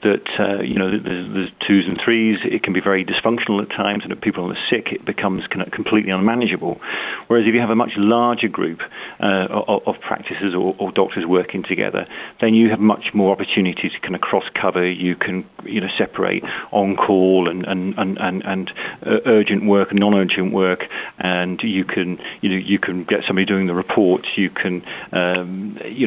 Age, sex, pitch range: 40-59, male, 90-105 Hz